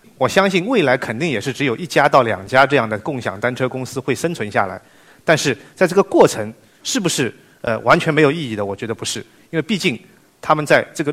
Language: Chinese